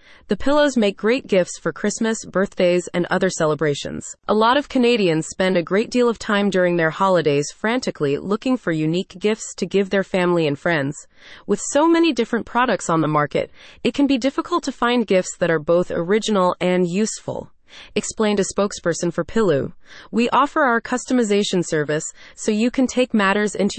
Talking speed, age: 180 wpm, 30-49